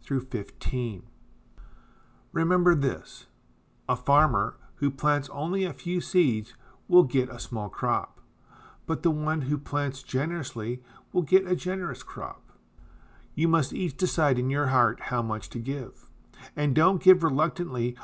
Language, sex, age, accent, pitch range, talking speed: English, male, 50-69, American, 125-150 Hz, 140 wpm